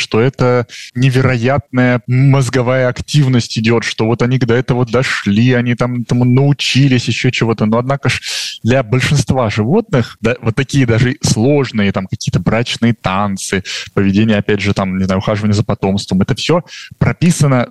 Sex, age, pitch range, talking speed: male, 20-39, 110-140 Hz, 155 wpm